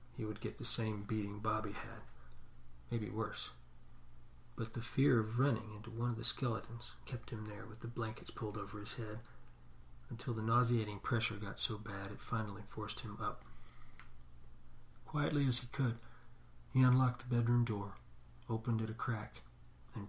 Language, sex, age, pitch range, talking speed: English, male, 40-59, 100-120 Hz, 165 wpm